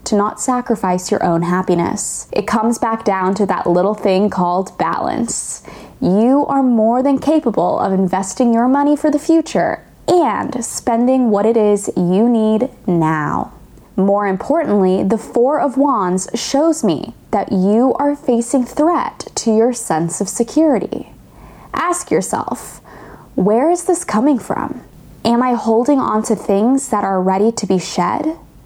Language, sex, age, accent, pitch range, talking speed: English, female, 10-29, American, 195-260 Hz, 155 wpm